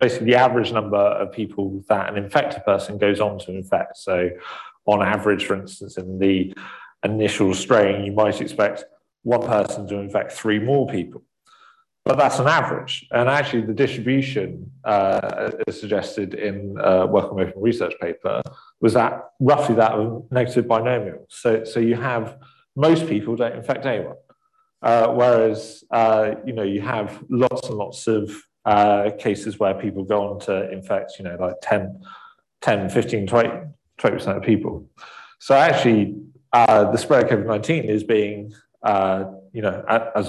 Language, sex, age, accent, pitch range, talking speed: English, male, 40-59, British, 100-120 Hz, 165 wpm